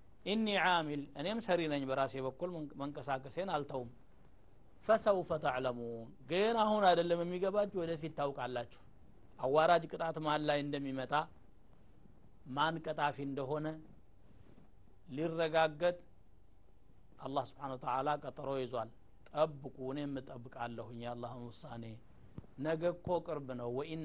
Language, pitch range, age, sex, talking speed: Amharic, 125-170 Hz, 60-79, male, 95 wpm